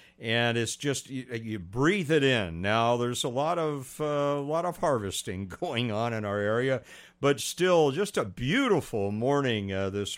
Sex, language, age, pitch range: male, English, 60-79, 110-140 Hz